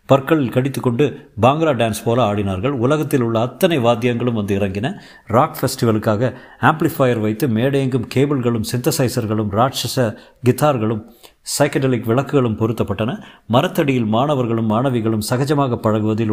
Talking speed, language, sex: 105 wpm, Tamil, male